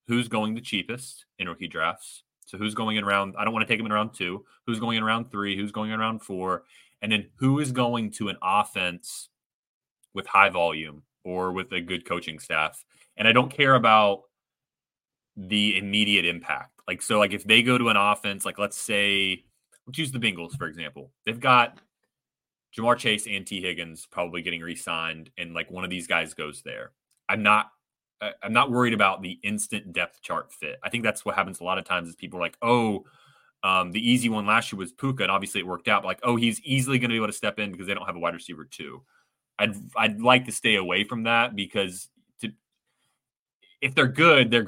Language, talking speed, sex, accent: English, 220 wpm, male, American